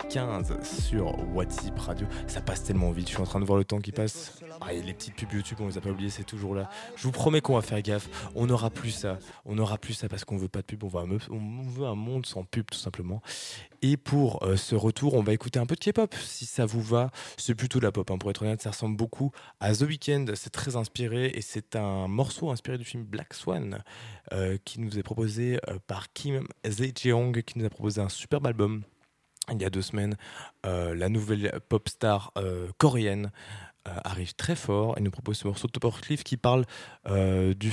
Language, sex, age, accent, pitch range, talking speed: French, male, 20-39, French, 100-120 Hz, 240 wpm